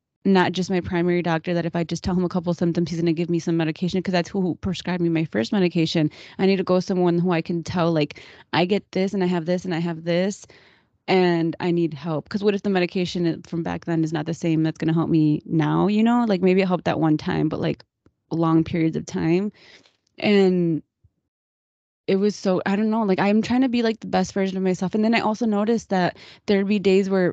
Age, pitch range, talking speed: 20-39, 170-200 Hz, 255 wpm